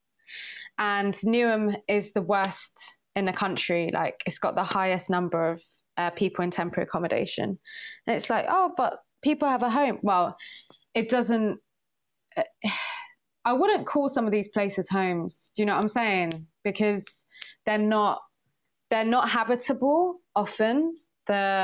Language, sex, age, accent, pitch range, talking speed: English, female, 20-39, British, 180-220 Hz, 150 wpm